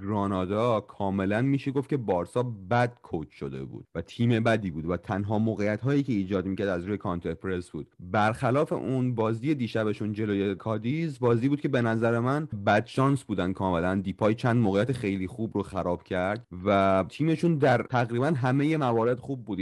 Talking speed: 175 wpm